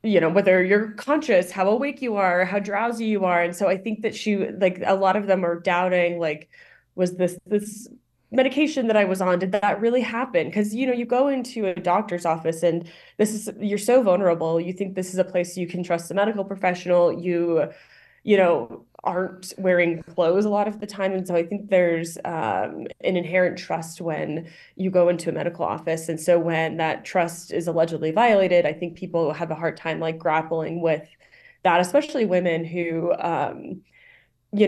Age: 20-39